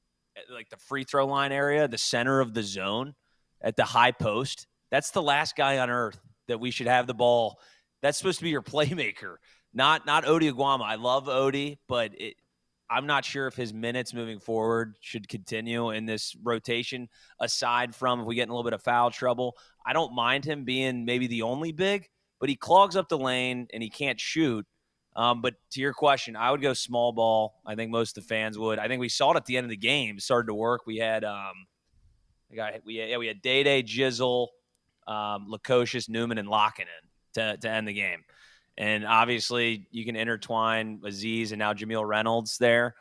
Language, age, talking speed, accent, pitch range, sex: English, 30-49, 210 wpm, American, 110-130 Hz, male